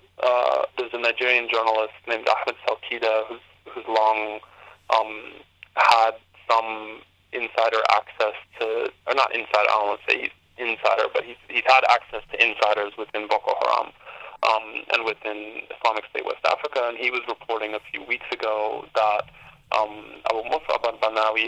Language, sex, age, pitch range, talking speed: English, male, 20-39, 110-115 Hz, 150 wpm